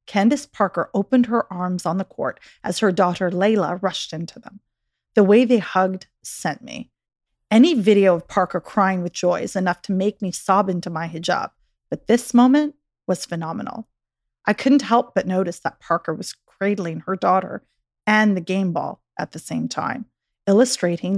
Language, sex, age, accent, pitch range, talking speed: English, female, 30-49, American, 180-225 Hz, 175 wpm